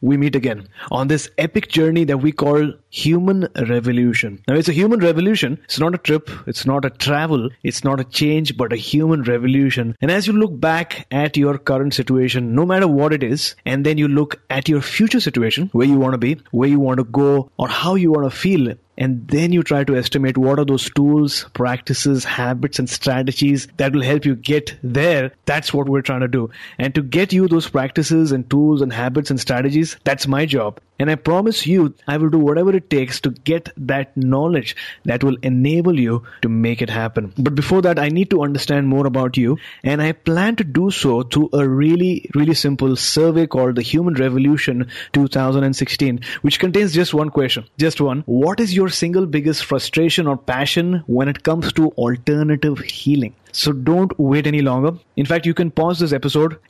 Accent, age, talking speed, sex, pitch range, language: Indian, 30-49, 205 wpm, male, 130-160 Hz, English